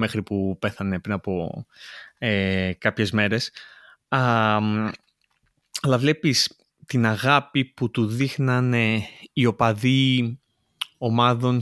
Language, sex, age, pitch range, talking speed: Greek, male, 20-39, 115-140 Hz, 105 wpm